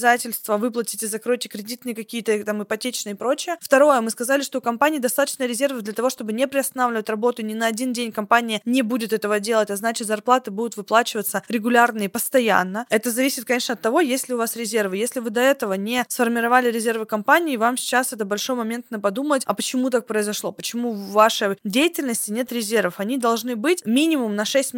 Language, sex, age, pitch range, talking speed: Russian, female, 20-39, 220-270 Hz, 190 wpm